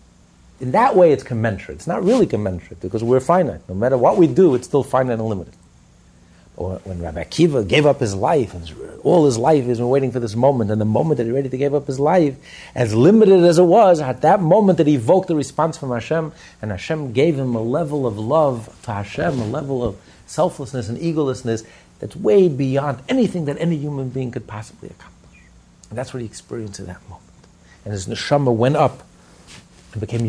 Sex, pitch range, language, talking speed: male, 95-145 Hz, English, 205 wpm